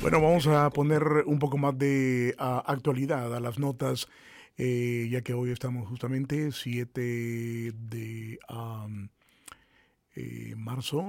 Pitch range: 120-145 Hz